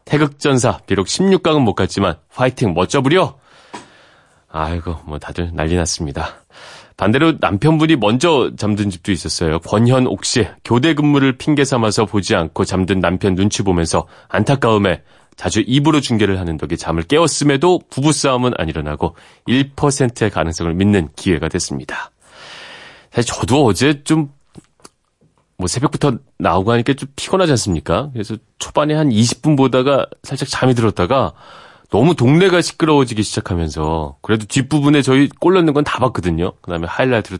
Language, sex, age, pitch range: Korean, male, 30-49, 90-135 Hz